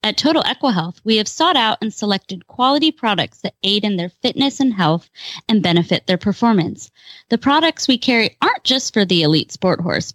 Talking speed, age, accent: 195 wpm, 20-39, American